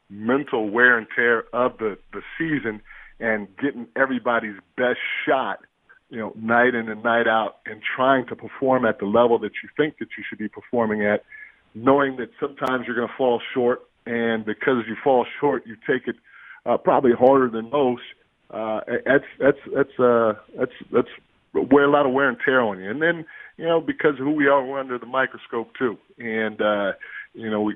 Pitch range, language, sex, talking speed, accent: 110-125 Hz, English, male, 195 wpm, American